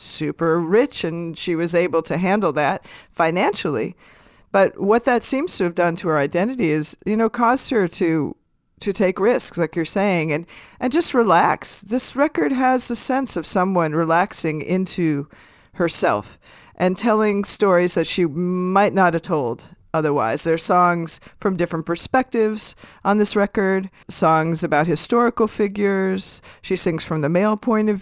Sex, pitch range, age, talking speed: female, 165-215 Hz, 50-69, 165 wpm